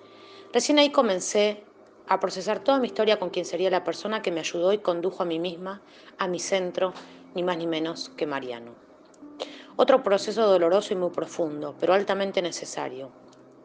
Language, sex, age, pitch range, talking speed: Spanish, female, 30-49, 160-200 Hz, 170 wpm